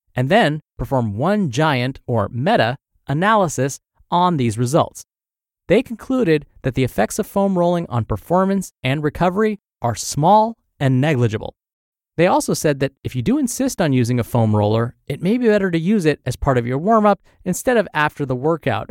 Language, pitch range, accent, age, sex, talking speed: English, 125-185 Hz, American, 30-49, male, 180 wpm